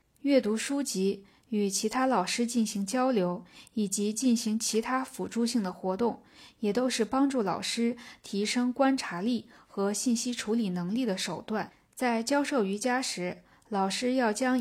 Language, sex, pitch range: Chinese, female, 200-250 Hz